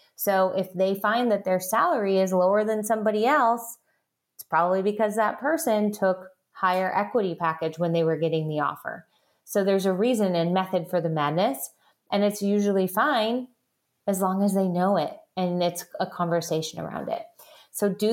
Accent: American